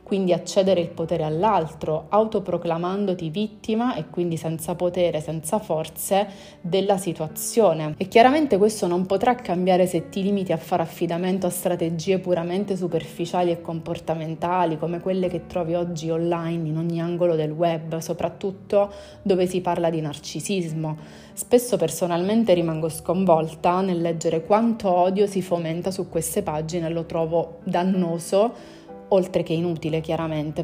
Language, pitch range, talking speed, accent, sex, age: Italian, 165-195 Hz, 140 wpm, native, female, 30-49